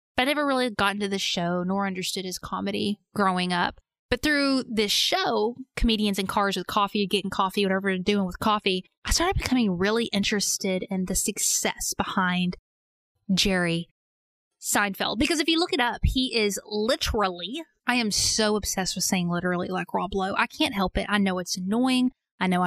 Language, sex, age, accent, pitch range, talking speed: English, female, 20-39, American, 185-240 Hz, 180 wpm